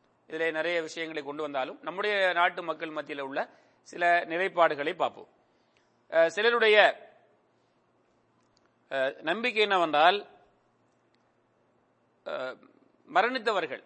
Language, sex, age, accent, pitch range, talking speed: English, male, 40-59, Indian, 155-185 Hz, 80 wpm